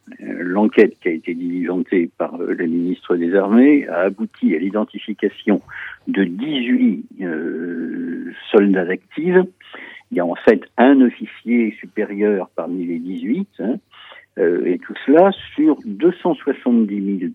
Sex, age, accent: male, 60-79, French